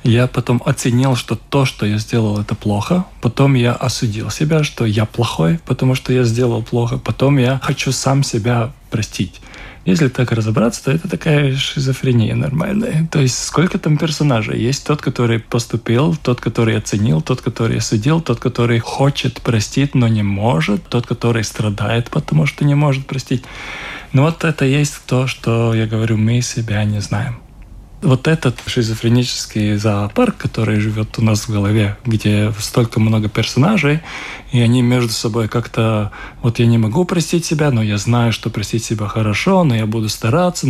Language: Russian